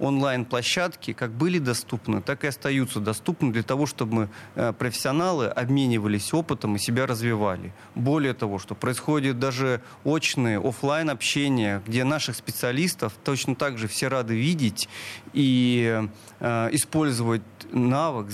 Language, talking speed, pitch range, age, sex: Russian, 120 wpm, 115-145 Hz, 30-49, male